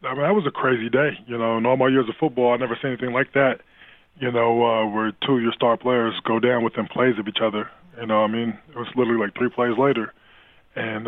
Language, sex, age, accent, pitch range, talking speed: English, male, 20-39, American, 115-125 Hz, 275 wpm